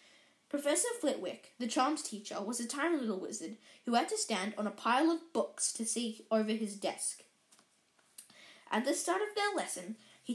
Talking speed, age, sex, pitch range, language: 180 wpm, 10-29, female, 225-295 Hz, English